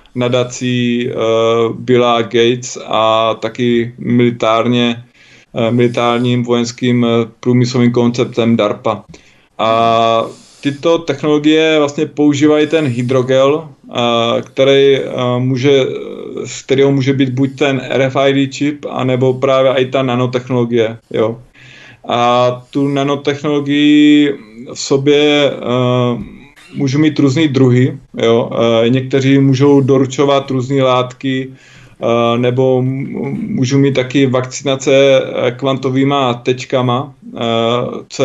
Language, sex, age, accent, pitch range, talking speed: Czech, male, 20-39, native, 120-140 Hz, 100 wpm